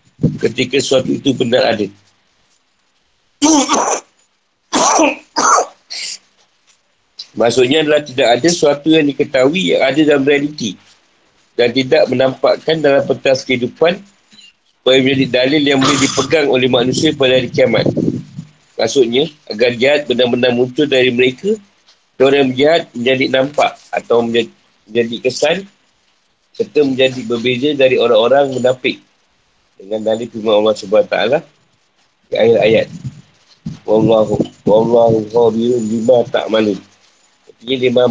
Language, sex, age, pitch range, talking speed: Malay, male, 50-69, 120-150 Hz, 105 wpm